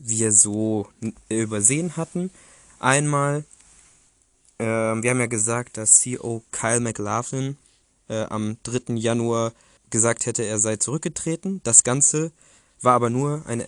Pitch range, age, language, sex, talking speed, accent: 110-130 Hz, 20-39, German, male, 125 wpm, German